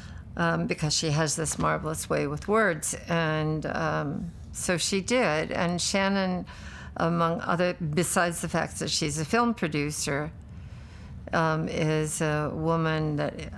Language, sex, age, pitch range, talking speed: English, female, 60-79, 150-170 Hz, 135 wpm